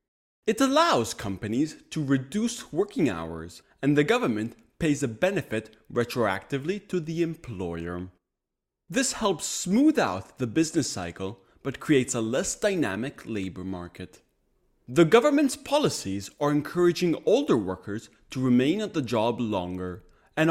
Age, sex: 30-49, male